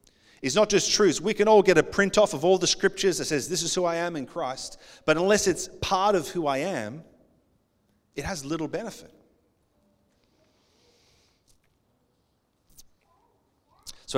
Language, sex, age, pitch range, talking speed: English, male, 30-49, 130-170 Hz, 155 wpm